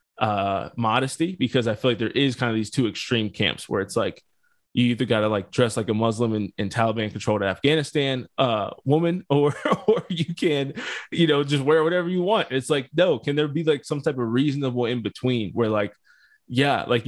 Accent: American